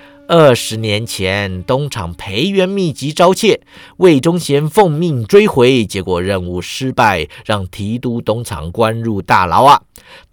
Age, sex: 50-69, male